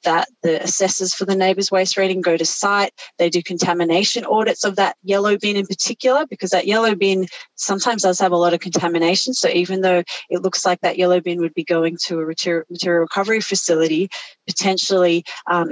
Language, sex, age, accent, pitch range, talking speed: English, female, 30-49, Australian, 165-195 Hz, 195 wpm